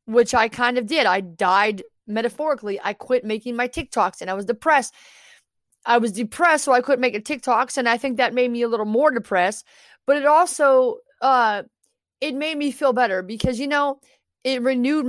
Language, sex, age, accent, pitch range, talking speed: English, female, 30-49, American, 225-280 Hz, 200 wpm